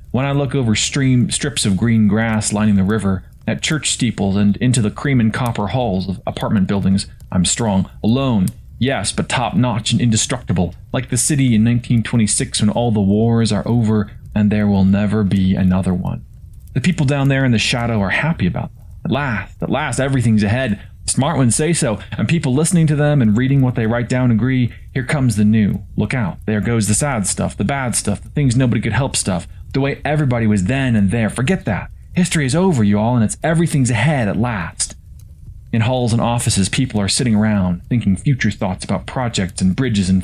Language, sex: English, male